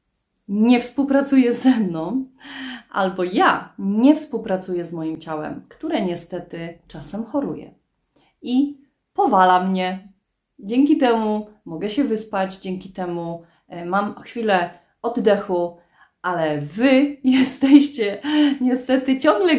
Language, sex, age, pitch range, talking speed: Polish, female, 30-49, 175-250 Hz, 100 wpm